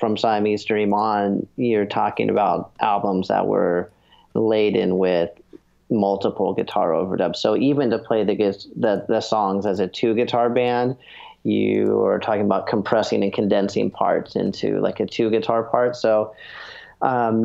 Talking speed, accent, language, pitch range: 140 wpm, American, English, 100-120 Hz